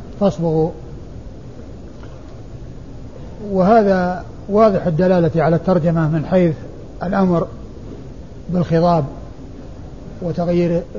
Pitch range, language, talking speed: 165-195 Hz, Arabic, 60 wpm